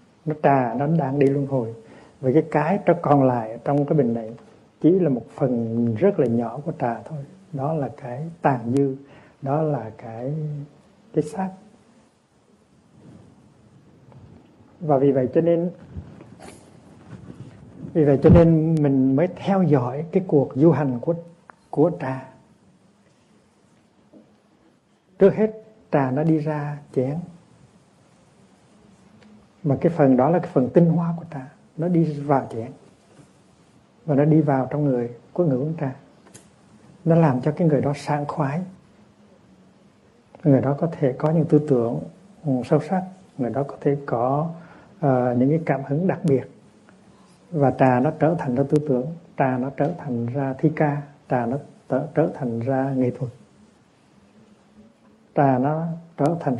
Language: Vietnamese